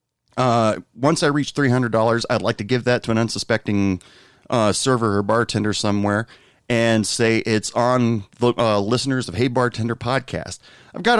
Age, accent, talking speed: 30-49, American, 165 wpm